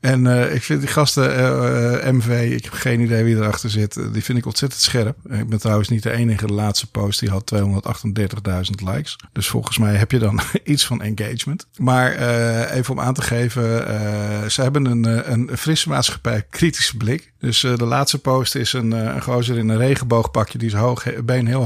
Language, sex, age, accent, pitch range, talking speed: Dutch, male, 50-69, Dutch, 105-130 Hz, 220 wpm